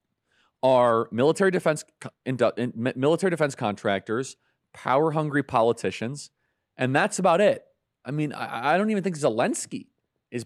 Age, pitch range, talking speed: 30-49, 105-150 Hz, 120 wpm